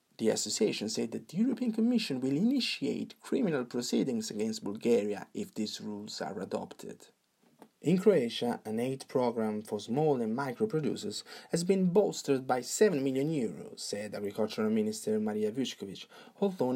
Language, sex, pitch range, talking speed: English, male, 135-220 Hz, 145 wpm